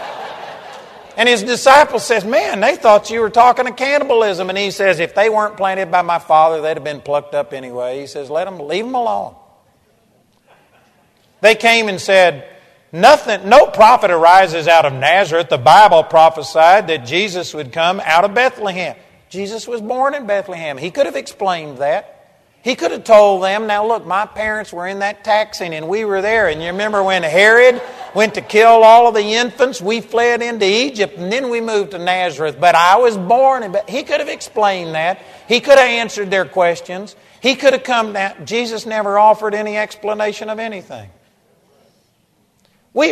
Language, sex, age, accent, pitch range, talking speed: English, male, 50-69, American, 180-230 Hz, 185 wpm